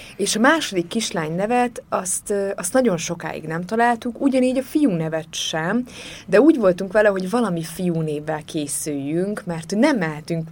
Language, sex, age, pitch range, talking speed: Hungarian, female, 20-39, 165-220 Hz, 160 wpm